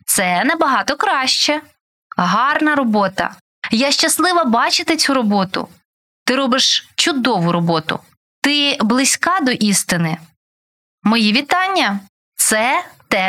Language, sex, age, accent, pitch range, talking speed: Ukrainian, female, 20-39, native, 195-290 Hz, 100 wpm